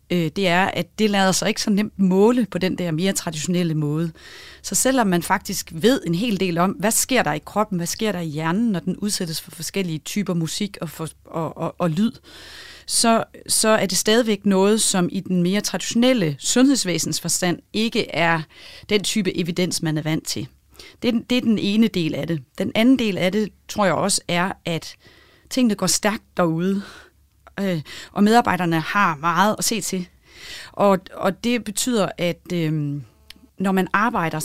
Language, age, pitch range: Danish, 30-49, 170-210 Hz